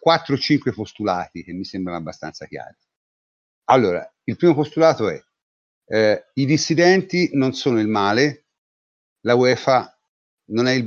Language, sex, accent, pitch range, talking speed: Italian, male, native, 100-135 Hz, 130 wpm